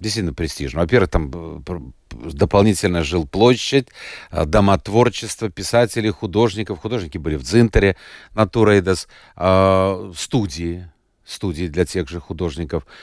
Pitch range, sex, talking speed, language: 85-120 Hz, male, 100 wpm, Russian